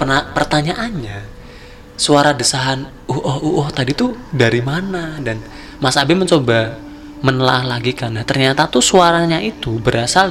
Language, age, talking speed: Indonesian, 20-39, 140 wpm